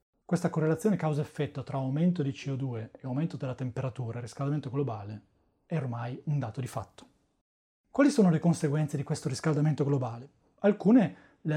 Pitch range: 135-175 Hz